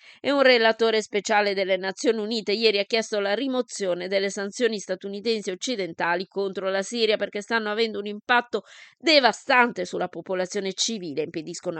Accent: native